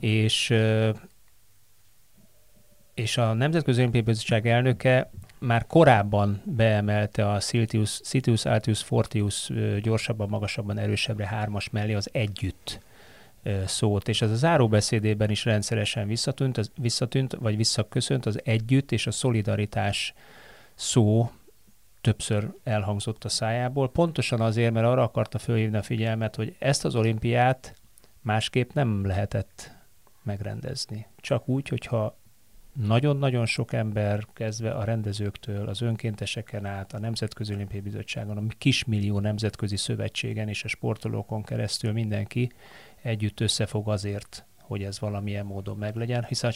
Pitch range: 105-115 Hz